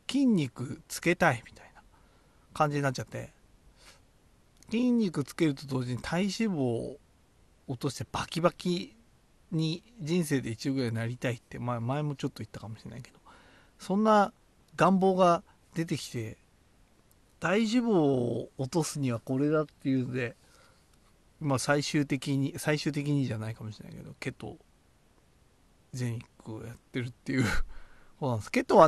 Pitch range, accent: 120-175 Hz, native